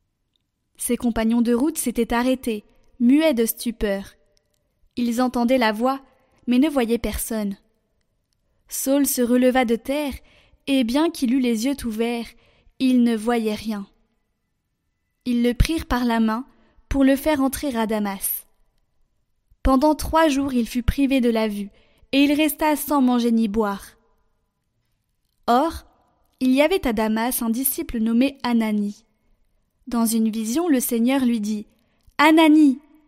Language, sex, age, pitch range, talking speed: French, female, 20-39, 225-270 Hz, 145 wpm